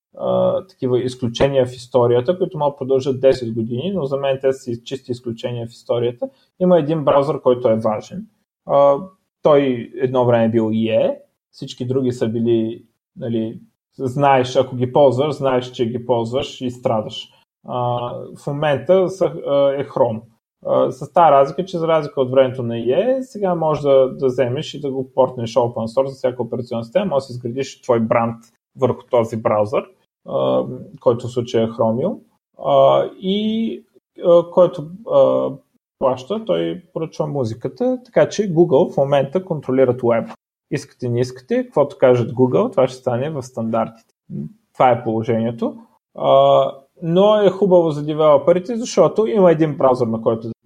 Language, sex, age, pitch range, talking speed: Bulgarian, male, 20-39, 125-180 Hz, 160 wpm